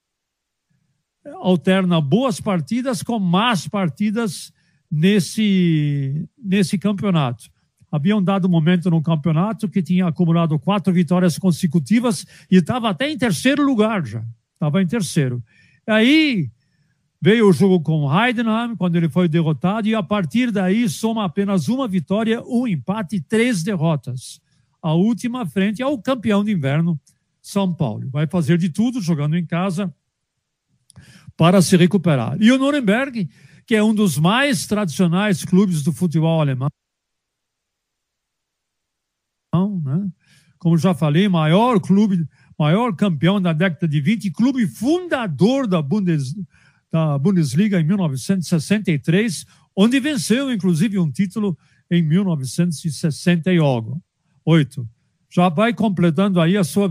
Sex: male